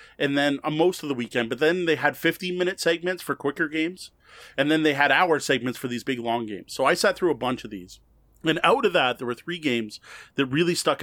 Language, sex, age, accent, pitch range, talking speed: English, male, 30-49, American, 125-170 Hz, 250 wpm